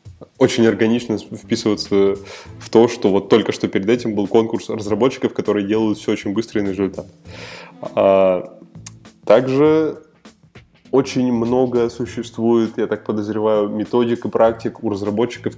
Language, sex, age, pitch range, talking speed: Russian, male, 20-39, 100-115 Hz, 125 wpm